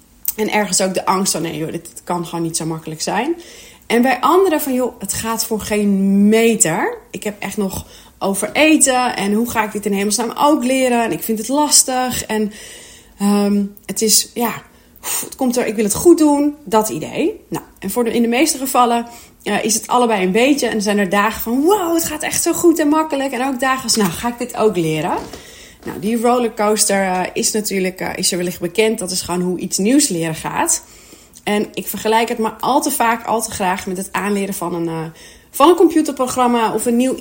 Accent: Dutch